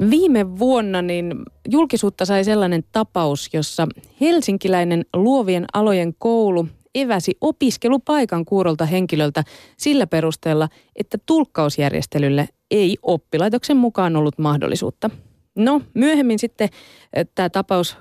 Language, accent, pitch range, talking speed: Finnish, native, 150-215 Hz, 100 wpm